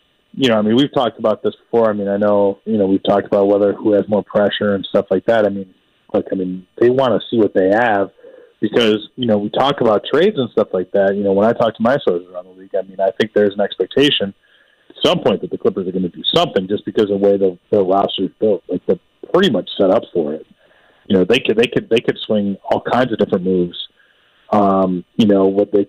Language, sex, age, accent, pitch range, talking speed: English, male, 30-49, American, 95-120 Hz, 270 wpm